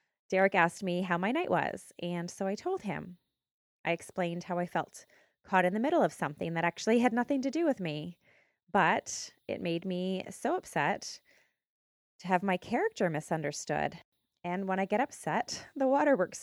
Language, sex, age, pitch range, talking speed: English, female, 20-39, 170-230 Hz, 180 wpm